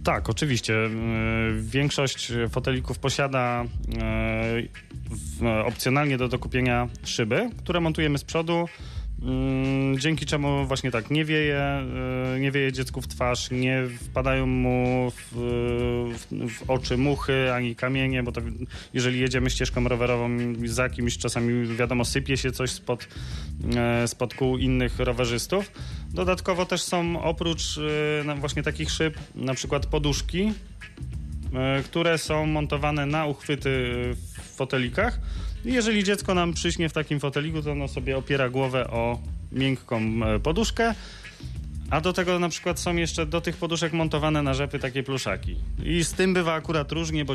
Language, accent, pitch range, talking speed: Polish, native, 120-150 Hz, 135 wpm